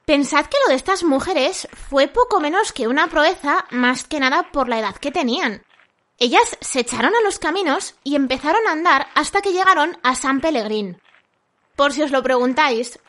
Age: 20-39